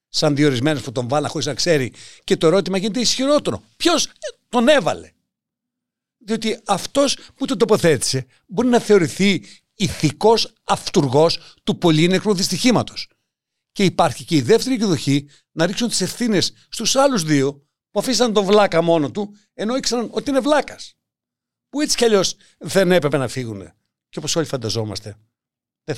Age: 60-79